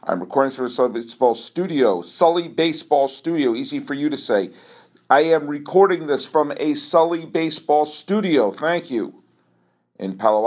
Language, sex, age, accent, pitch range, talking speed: English, male, 50-69, American, 125-200 Hz, 165 wpm